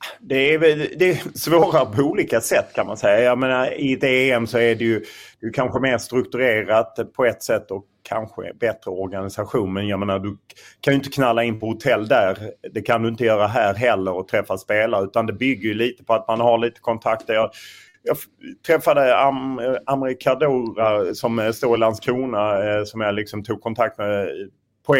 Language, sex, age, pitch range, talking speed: Swedish, male, 30-49, 105-130 Hz, 195 wpm